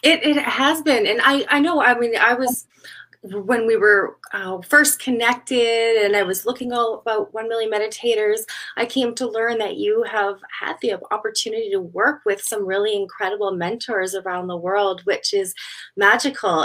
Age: 20-39